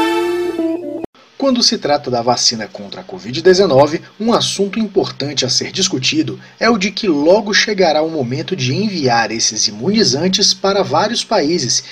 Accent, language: Brazilian, Portuguese